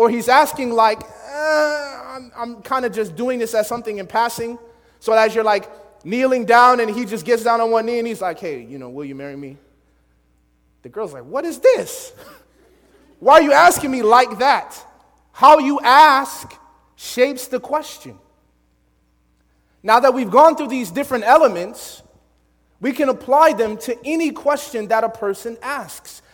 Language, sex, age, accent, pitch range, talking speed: English, male, 30-49, American, 220-280 Hz, 175 wpm